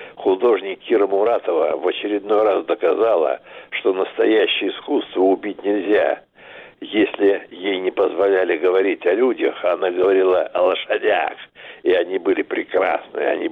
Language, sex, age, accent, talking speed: Russian, male, 60-79, native, 130 wpm